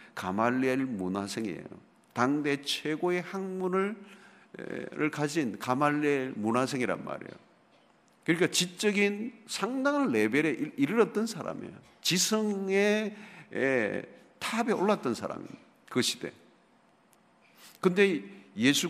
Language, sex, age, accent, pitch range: Korean, male, 50-69, native, 150-210 Hz